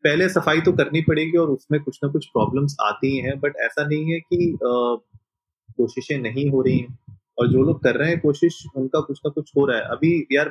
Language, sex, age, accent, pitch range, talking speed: Hindi, male, 30-49, native, 120-150 Hz, 225 wpm